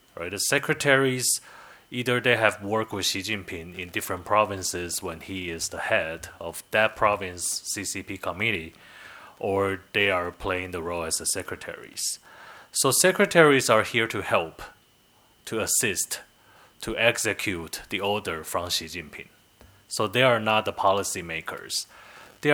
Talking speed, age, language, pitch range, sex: 145 wpm, 30-49, English, 90-115 Hz, male